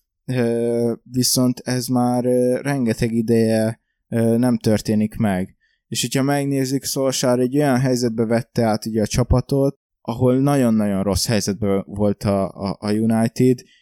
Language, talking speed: Hungarian, 140 wpm